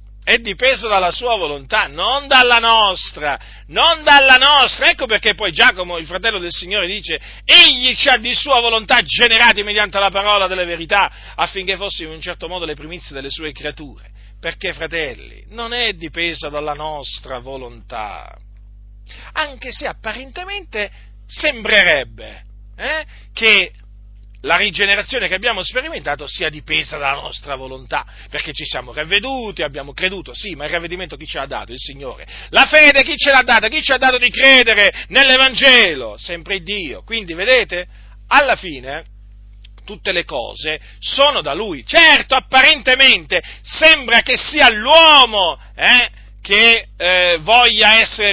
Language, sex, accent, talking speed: Italian, male, native, 150 wpm